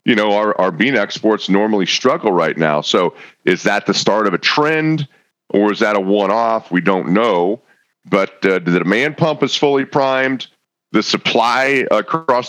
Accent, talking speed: American, 185 wpm